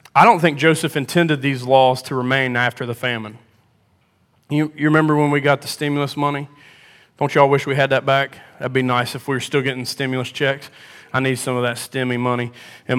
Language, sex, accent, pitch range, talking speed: English, male, American, 130-170 Hz, 210 wpm